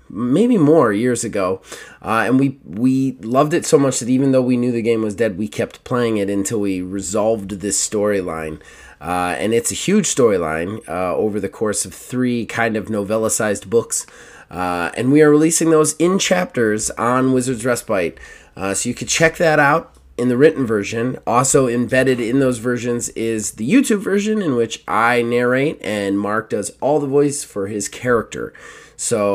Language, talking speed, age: English, 185 wpm, 30-49